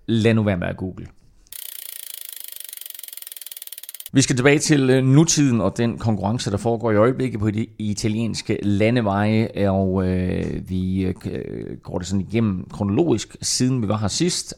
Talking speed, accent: 150 wpm, native